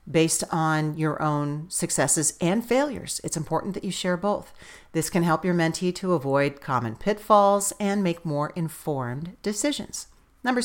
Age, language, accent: 40-59, English, American